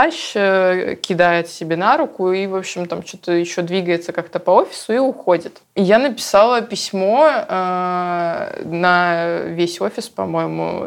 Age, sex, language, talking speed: 20-39, female, Russian, 135 wpm